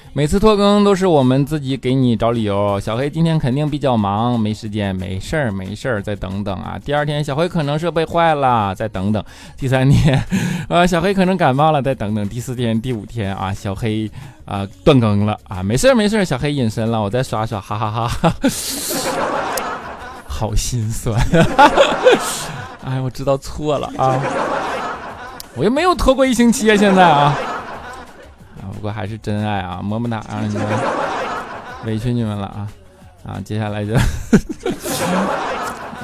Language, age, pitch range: Chinese, 20-39, 105-135 Hz